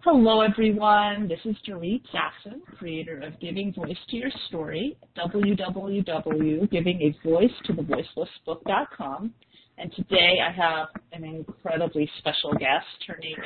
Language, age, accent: English, 40-59, American